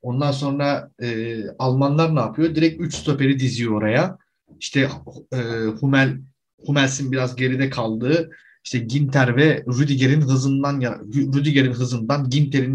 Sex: male